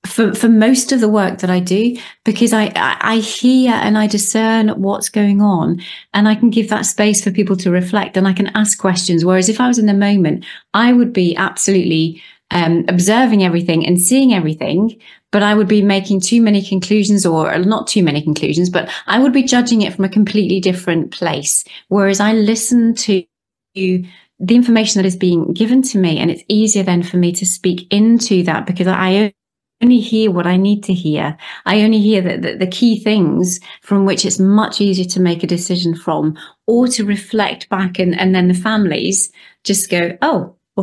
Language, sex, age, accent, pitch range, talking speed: English, female, 30-49, British, 185-225 Hz, 205 wpm